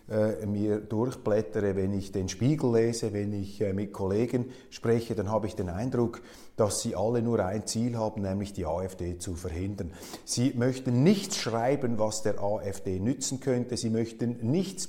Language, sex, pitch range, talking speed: German, male, 100-125 Hz, 165 wpm